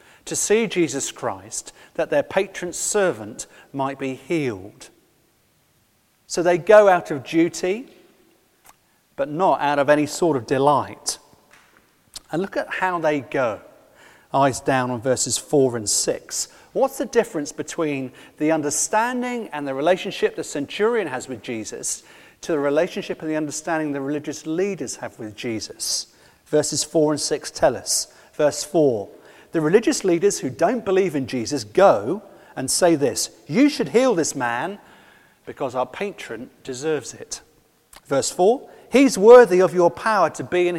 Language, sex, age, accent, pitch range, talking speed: English, male, 40-59, British, 135-190 Hz, 155 wpm